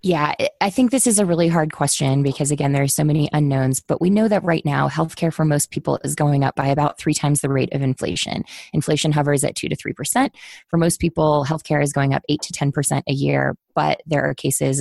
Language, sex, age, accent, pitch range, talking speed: English, female, 20-39, American, 140-170 Hz, 240 wpm